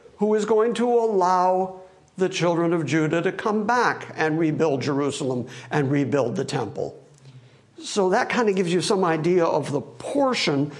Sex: male